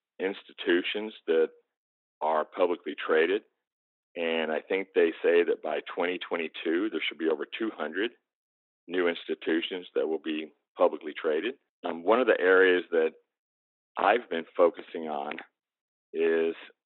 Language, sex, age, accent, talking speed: English, male, 40-59, American, 130 wpm